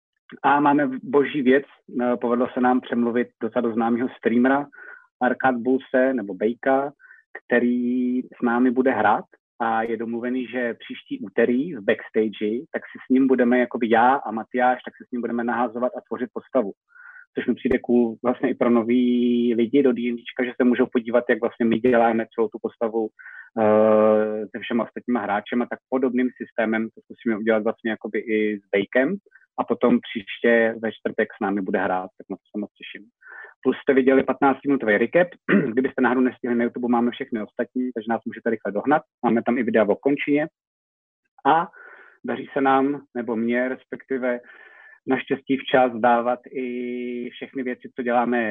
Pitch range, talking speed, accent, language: 110-130 Hz, 170 wpm, native, Czech